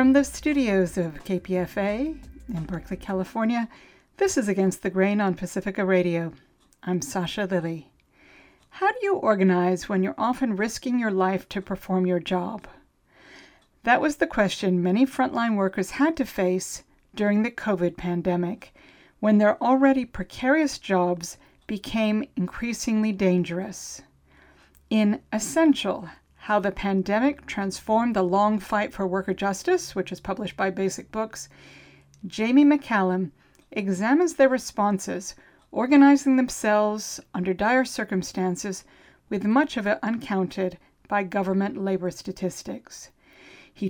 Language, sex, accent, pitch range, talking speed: English, female, American, 185-235 Hz, 125 wpm